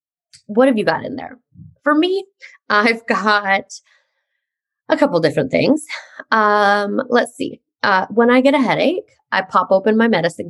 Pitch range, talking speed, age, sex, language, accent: 205-280 Hz, 160 wpm, 20-39, female, English, American